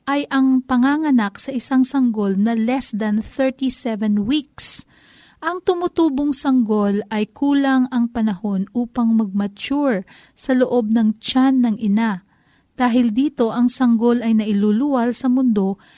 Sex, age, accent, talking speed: female, 40-59, native, 130 wpm